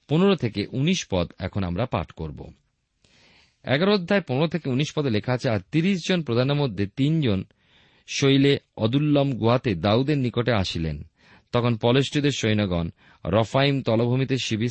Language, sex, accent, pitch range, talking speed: Bengali, male, native, 95-130 Hz, 140 wpm